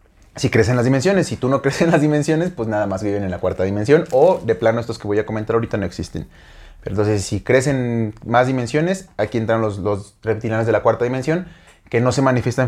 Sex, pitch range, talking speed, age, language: male, 105-130 Hz, 225 wpm, 30-49, Spanish